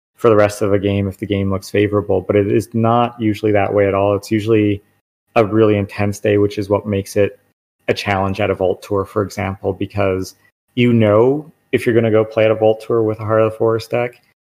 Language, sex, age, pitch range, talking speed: English, male, 30-49, 100-115 Hz, 245 wpm